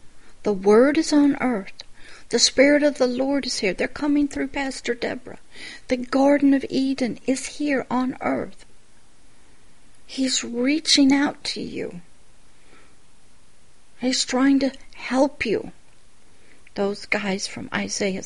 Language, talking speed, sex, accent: English, 130 wpm, female, American